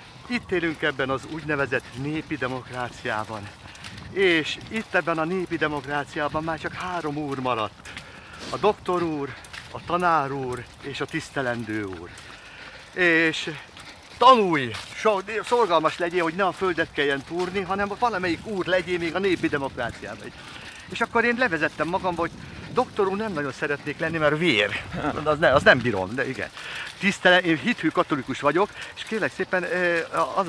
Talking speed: 150 wpm